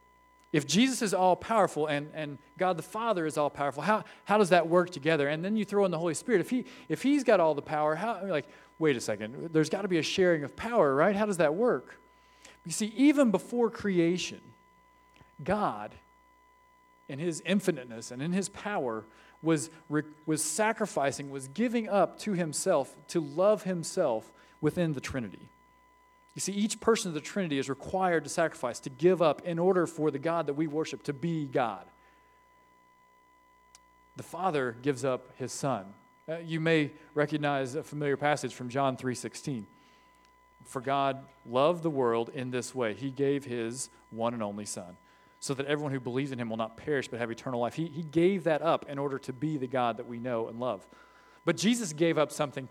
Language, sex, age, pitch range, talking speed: English, male, 40-59, 140-205 Hz, 195 wpm